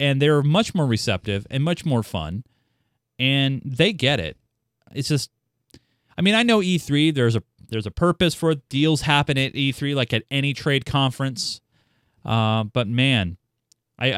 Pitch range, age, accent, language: 120-155 Hz, 30-49, American, English